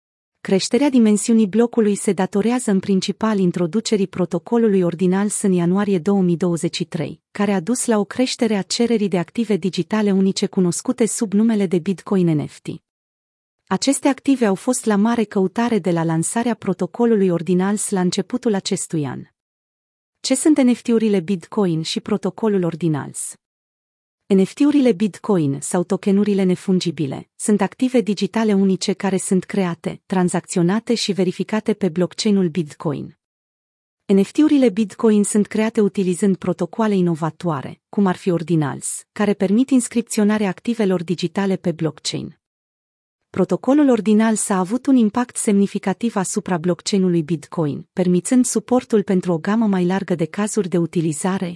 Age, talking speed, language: 30-49, 130 wpm, Romanian